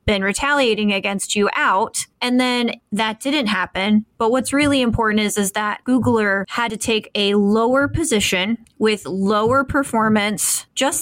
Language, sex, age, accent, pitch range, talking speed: English, female, 20-39, American, 200-235 Hz, 150 wpm